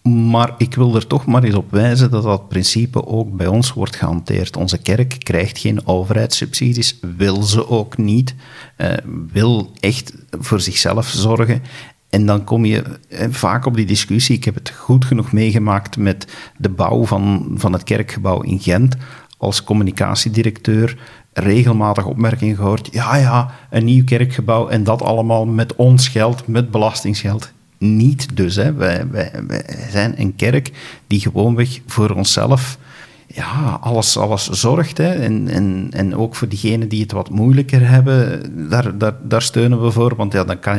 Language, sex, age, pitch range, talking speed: Dutch, male, 50-69, 105-125 Hz, 155 wpm